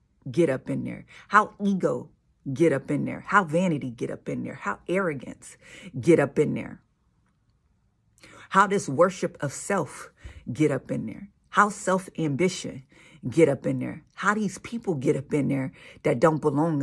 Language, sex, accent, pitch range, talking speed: English, female, American, 140-190 Hz, 170 wpm